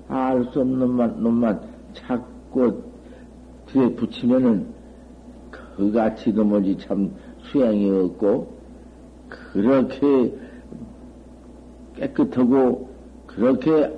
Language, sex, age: Korean, male, 60-79